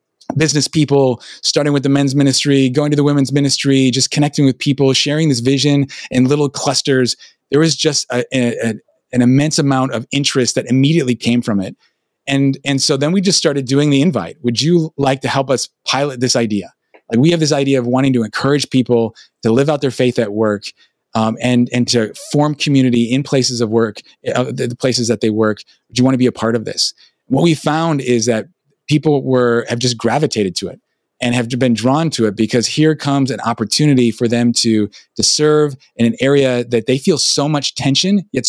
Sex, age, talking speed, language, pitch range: male, 20-39, 215 wpm, English, 120-145 Hz